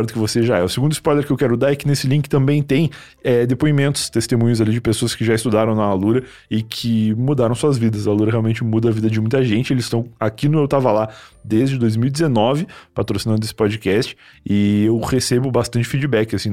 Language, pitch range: Portuguese, 105-130 Hz